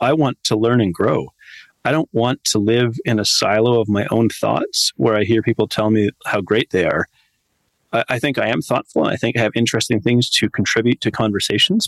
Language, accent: English, American